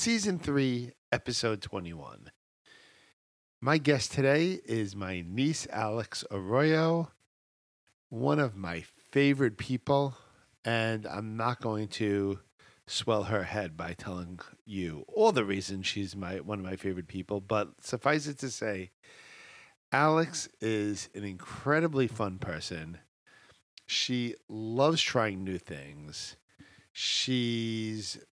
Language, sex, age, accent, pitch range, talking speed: English, male, 50-69, American, 95-130 Hz, 115 wpm